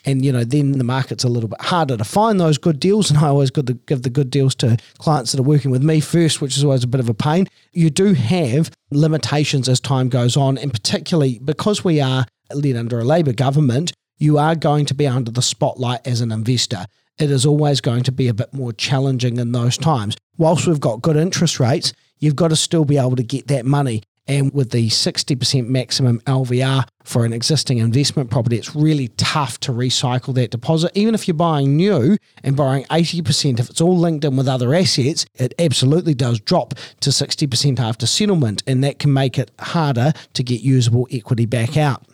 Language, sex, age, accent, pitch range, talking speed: English, male, 40-59, Australian, 125-155 Hz, 215 wpm